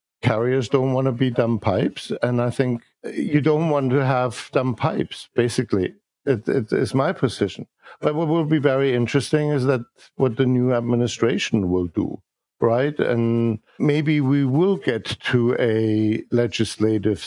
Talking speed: 160 wpm